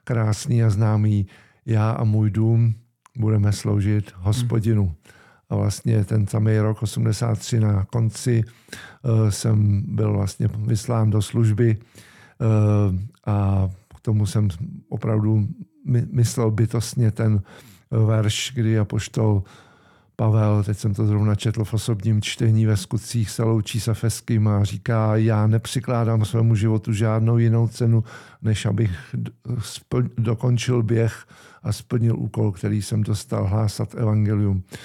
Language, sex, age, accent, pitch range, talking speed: Czech, male, 50-69, native, 105-115 Hz, 125 wpm